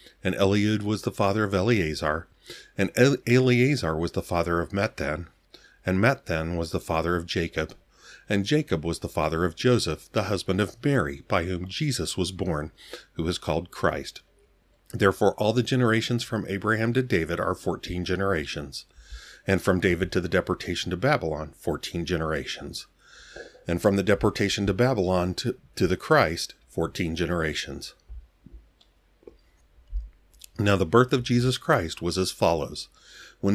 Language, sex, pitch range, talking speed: English, male, 85-115 Hz, 150 wpm